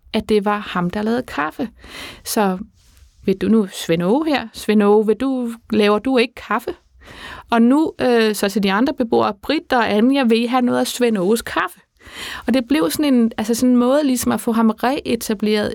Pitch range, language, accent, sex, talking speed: 210-245 Hz, Danish, native, female, 200 wpm